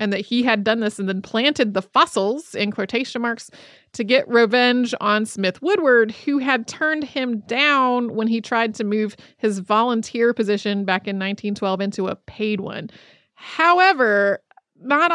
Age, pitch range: 30-49, 205-260 Hz